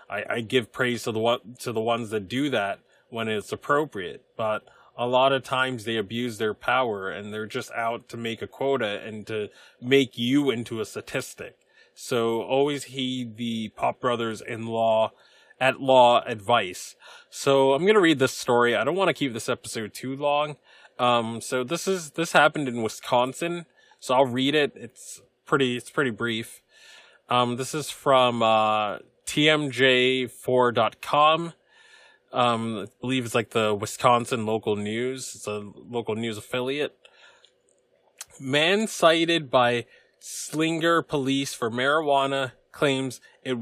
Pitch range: 115-145 Hz